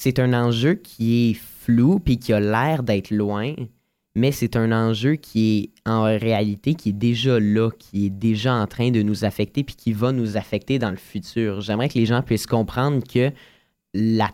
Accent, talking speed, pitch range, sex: Canadian, 200 wpm, 105-125 Hz, male